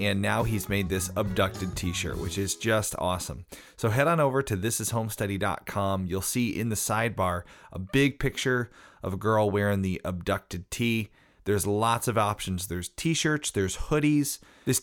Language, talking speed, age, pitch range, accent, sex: English, 165 wpm, 30-49, 95-130 Hz, American, male